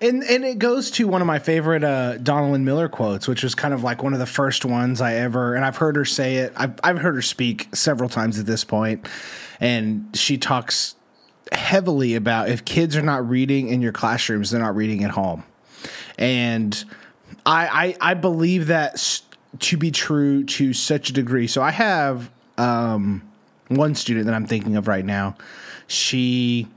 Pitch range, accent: 120-165 Hz, American